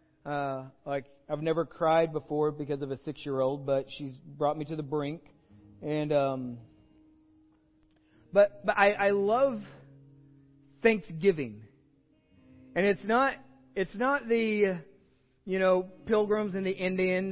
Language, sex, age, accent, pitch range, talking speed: English, male, 40-59, American, 145-205 Hz, 130 wpm